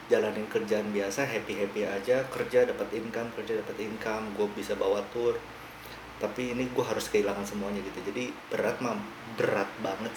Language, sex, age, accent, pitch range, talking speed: Indonesian, male, 30-49, native, 105-135 Hz, 160 wpm